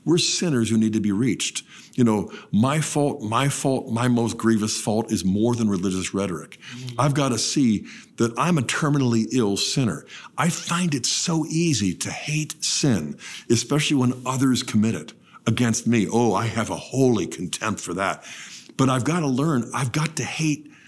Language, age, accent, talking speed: English, 50-69, American, 185 wpm